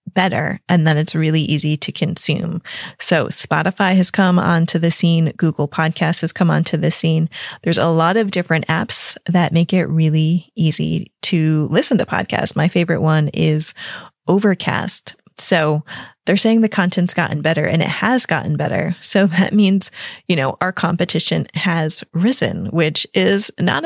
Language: English